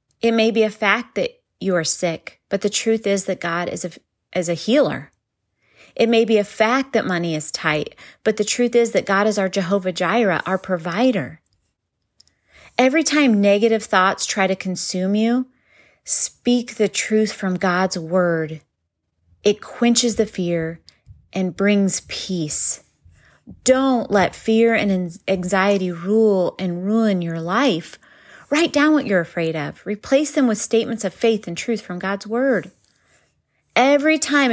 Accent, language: American, English